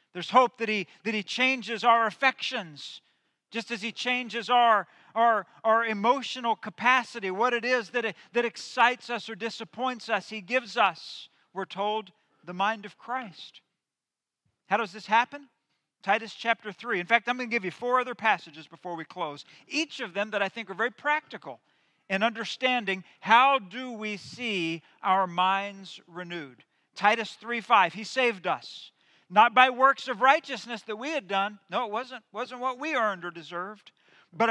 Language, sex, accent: English, male, American